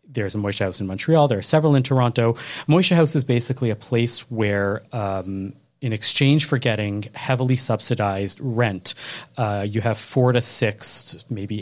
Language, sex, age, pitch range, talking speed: English, male, 30-49, 105-125 Hz, 165 wpm